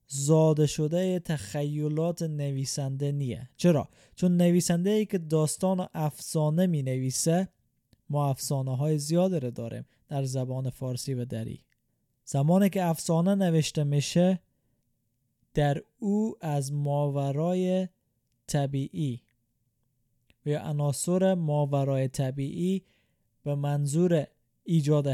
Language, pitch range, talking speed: Persian, 135-170 Hz, 100 wpm